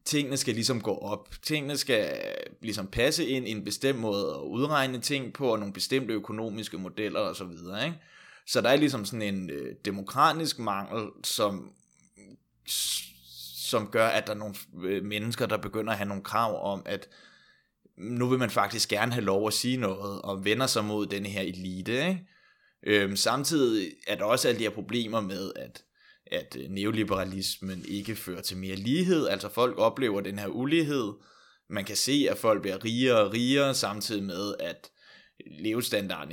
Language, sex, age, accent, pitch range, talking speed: Danish, male, 20-39, native, 100-125 Hz, 170 wpm